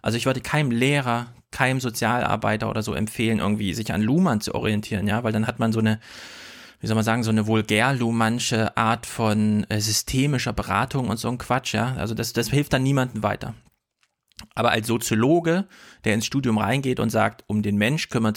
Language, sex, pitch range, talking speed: German, male, 110-125 Hz, 195 wpm